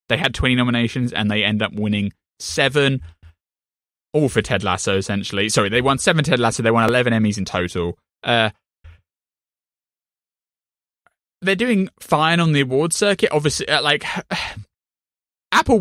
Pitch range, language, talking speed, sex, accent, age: 95-125 Hz, English, 145 wpm, male, British, 20-39